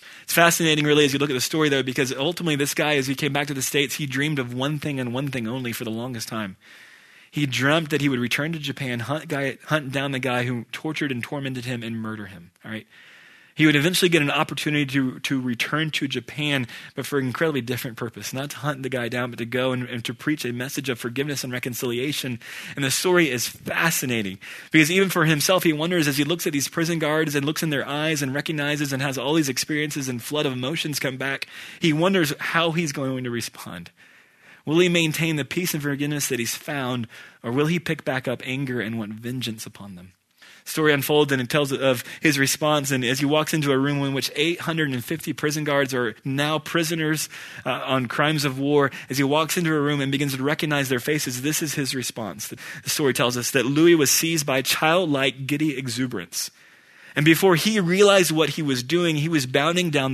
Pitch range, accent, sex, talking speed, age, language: 130-155 Hz, American, male, 225 wpm, 20-39, English